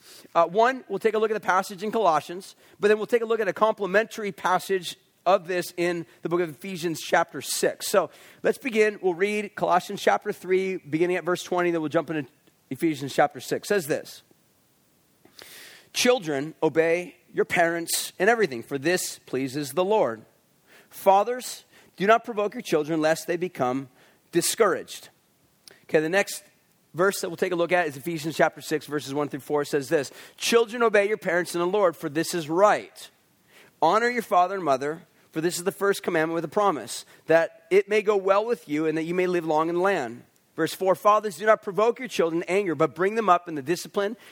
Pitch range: 165-205 Hz